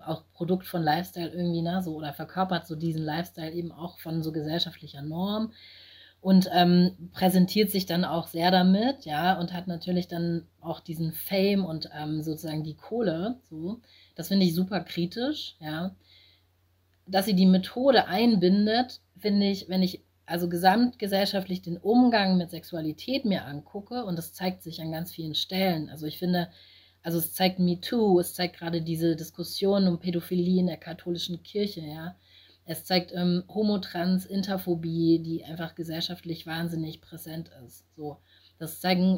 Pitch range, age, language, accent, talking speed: 160-185 Hz, 30-49, German, German, 160 wpm